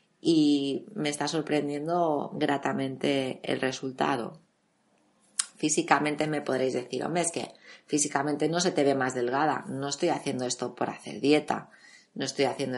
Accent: Spanish